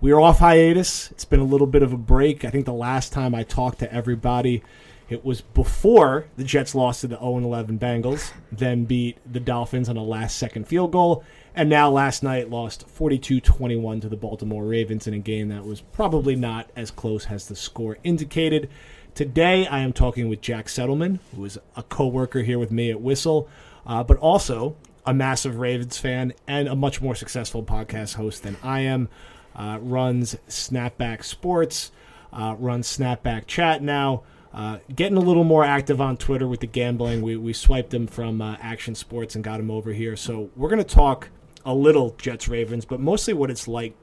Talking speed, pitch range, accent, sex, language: 195 wpm, 115-135 Hz, American, male, English